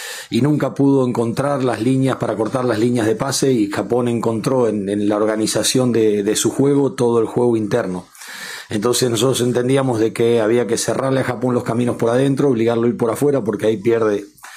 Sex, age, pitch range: male, 40-59, 110-130 Hz